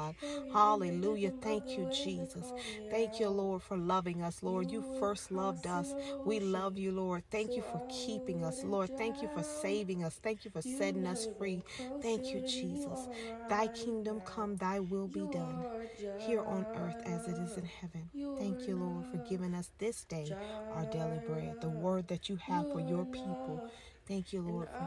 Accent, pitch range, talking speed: American, 165-230 Hz, 185 wpm